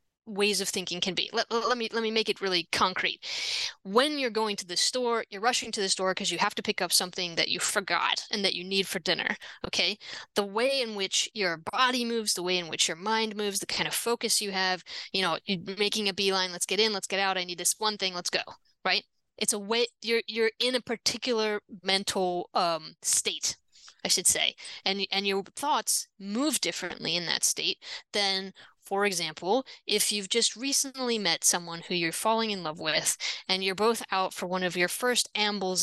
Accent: American